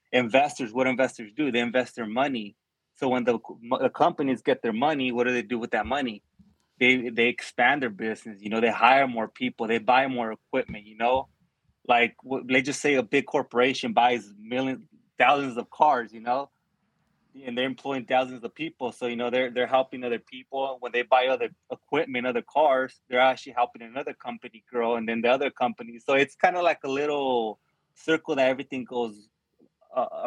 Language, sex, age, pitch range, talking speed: English, male, 20-39, 120-135 Hz, 195 wpm